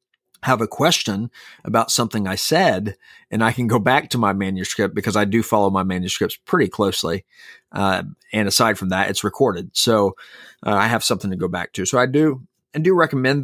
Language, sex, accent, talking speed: English, male, American, 200 wpm